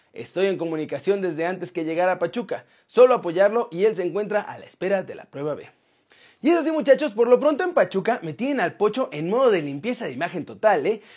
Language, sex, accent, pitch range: Spanish, male, Mexican, 190-255 Hz